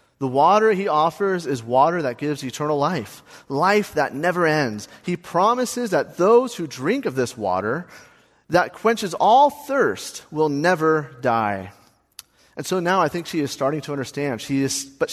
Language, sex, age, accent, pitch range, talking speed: English, male, 30-49, American, 120-165 Hz, 170 wpm